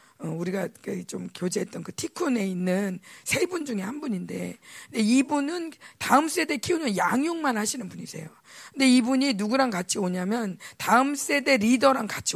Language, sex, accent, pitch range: Korean, female, native, 190-255 Hz